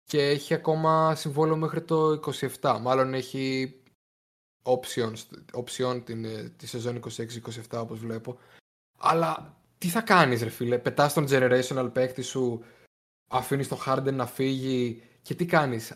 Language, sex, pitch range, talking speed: Greek, male, 125-160 Hz, 135 wpm